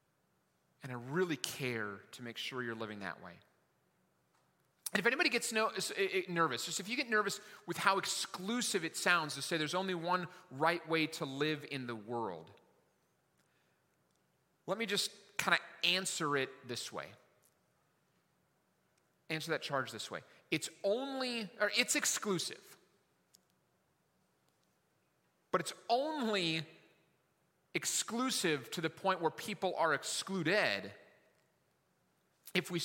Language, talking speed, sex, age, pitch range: English, 130 wpm, male, 30-49, 150-200 Hz